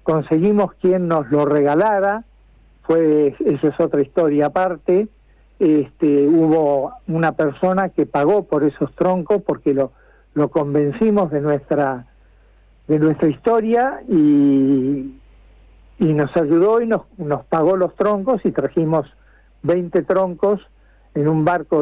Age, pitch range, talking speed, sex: 60-79, 145-190 Hz, 120 wpm, male